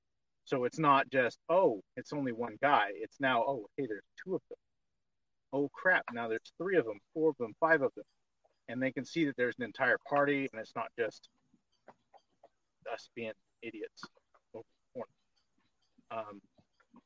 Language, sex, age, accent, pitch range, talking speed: English, male, 40-59, American, 115-160 Hz, 170 wpm